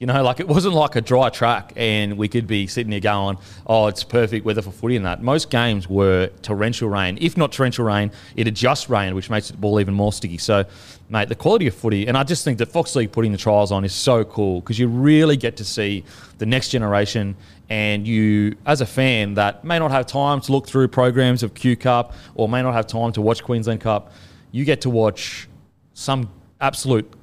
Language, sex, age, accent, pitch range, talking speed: English, male, 30-49, Australian, 105-130 Hz, 230 wpm